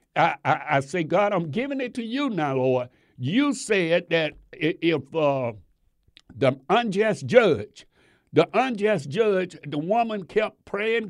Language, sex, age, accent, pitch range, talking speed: English, male, 60-79, American, 155-220 Hz, 145 wpm